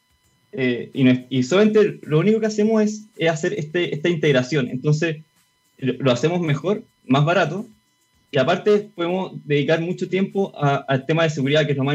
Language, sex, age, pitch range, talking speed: Spanish, male, 20-39, 135-160 Hz, 185 wpm